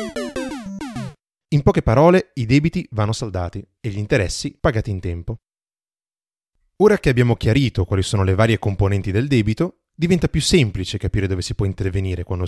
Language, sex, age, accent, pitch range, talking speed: Italian, male, 30-49, native, 95-145 Hz, 160 wpm